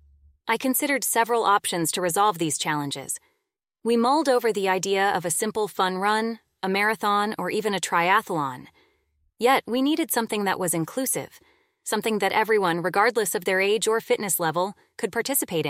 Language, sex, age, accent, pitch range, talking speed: English, female, 20-39, American, 190-245 Hz, 165 wpm